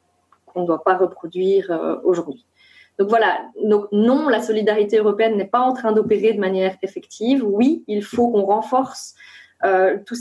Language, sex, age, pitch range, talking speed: French, female, 20-39, 190-240 Hz, 165 wpm